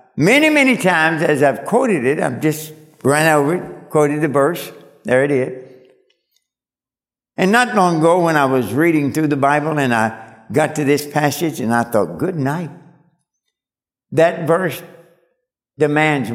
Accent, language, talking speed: American, English, 160 wpm